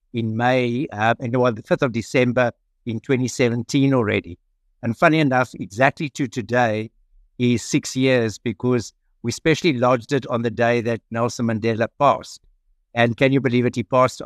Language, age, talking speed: English, 60-79, 175 wpm